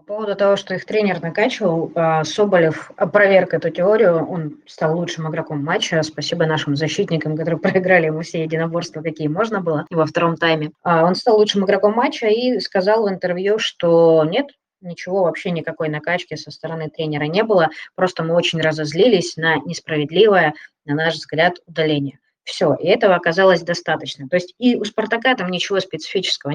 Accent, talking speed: native, 165 wpm